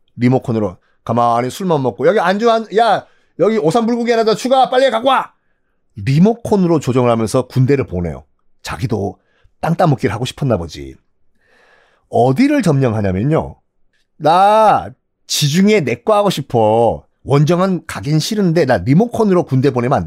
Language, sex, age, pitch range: Korean, male, 40-59, 125-210 Hz